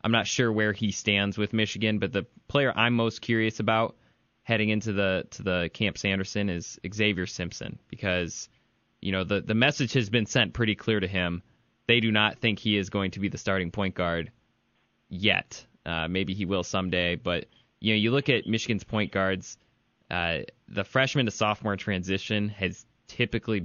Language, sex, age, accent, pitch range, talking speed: English, male, 20-39, American, 95-115 Hz, 190 wpm